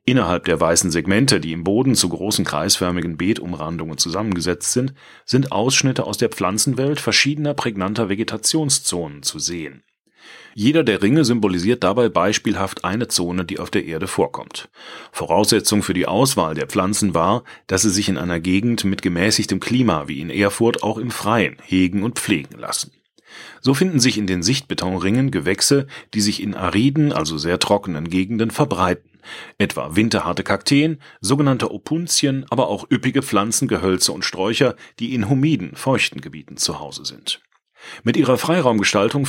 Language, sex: German, male